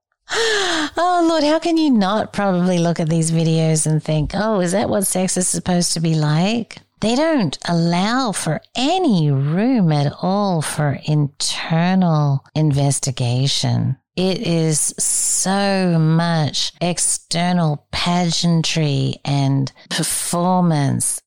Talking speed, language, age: 120 wpm, English, 40-59